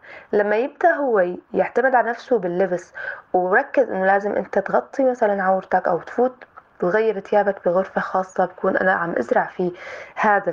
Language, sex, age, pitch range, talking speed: Arabic, female, 20-39, 185-245 Hz, 150 wpm